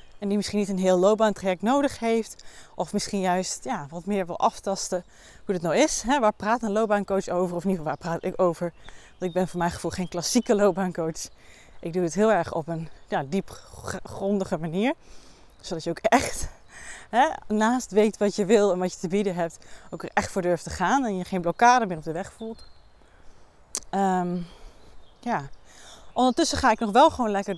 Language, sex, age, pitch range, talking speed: Dutch, female, 20-39, 180-225 Hz, 210 wpm